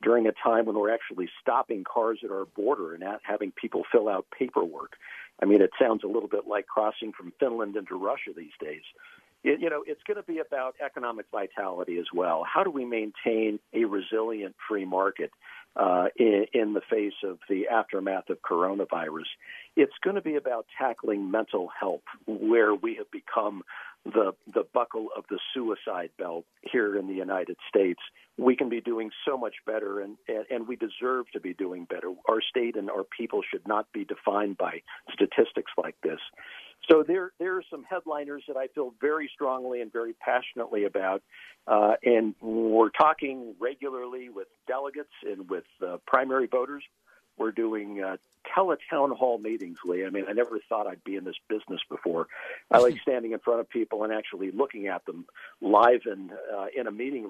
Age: 50-69